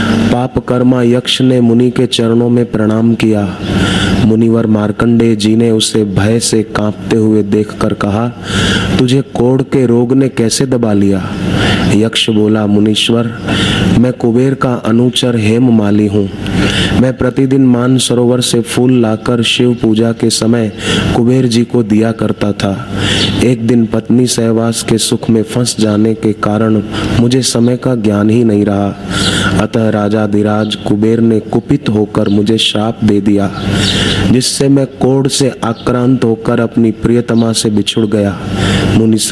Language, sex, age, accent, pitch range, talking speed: Hindi, male, 30-49, native, 105-120 Hz, 140 wpm